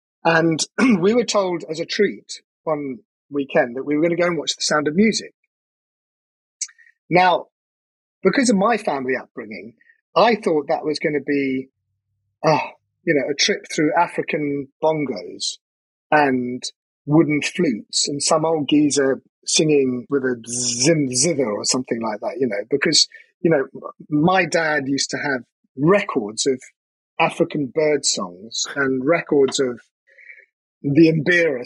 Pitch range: 135-170 Hz